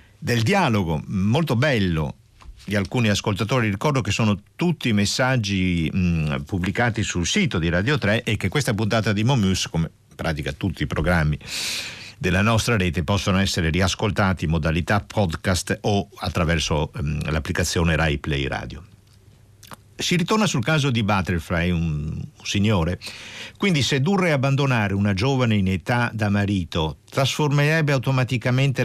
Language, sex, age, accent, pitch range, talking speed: Italian, male, 50-69, native, 100-125 Hz, 140 wpm